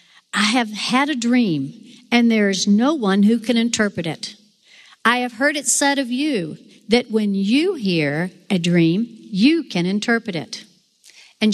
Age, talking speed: 60-79, 165 wpm